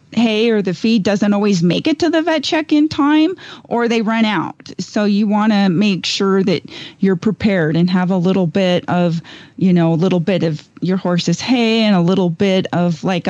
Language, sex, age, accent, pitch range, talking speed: English, female, 30-49, American, 175-215 Hz, 215 wpm